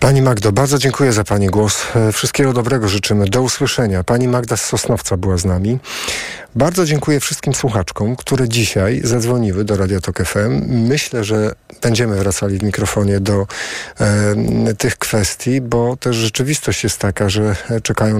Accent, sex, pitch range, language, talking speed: native, male, 105-125 Hz, Polish, 150 wpm